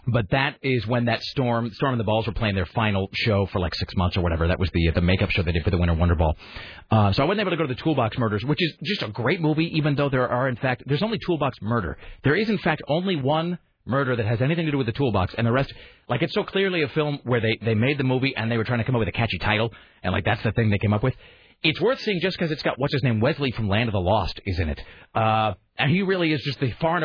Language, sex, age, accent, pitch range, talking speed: English, male, 30-49, American, 105-150 Hz, 305 wpm